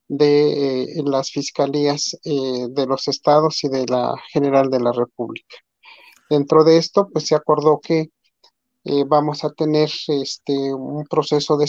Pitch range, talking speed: 145-165 Hz, 155 wpm